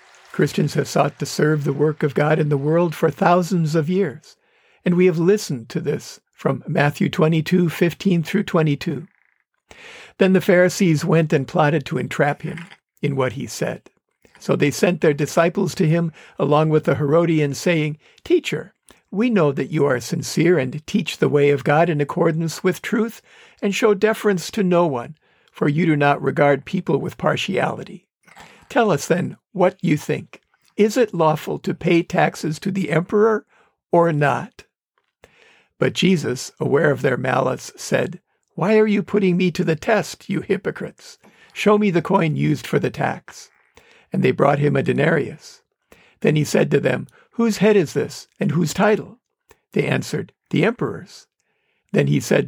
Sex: male